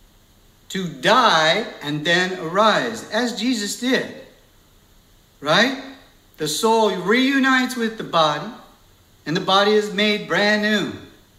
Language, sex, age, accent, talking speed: English, male, 60-79, American, 115 wpm